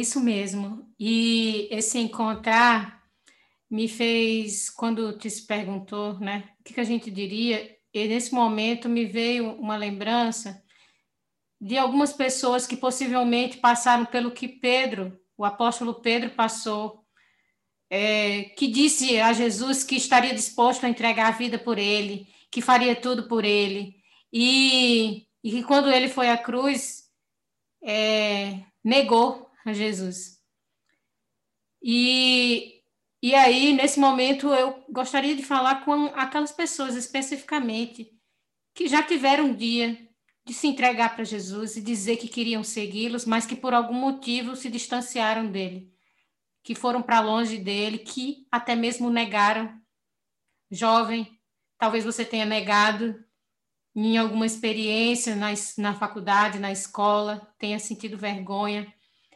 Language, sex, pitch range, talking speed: Portuguese, female, 215-250 Hz, 125 wpm